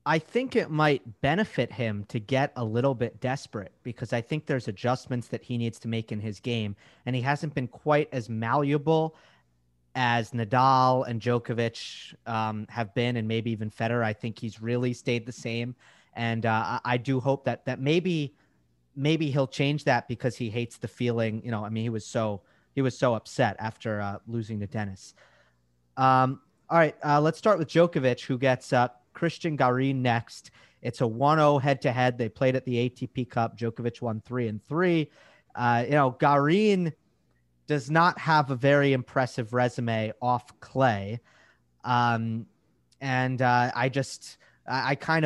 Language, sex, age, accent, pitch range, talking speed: English, male, 30-49, American, 115-135 Hz, 180 wpm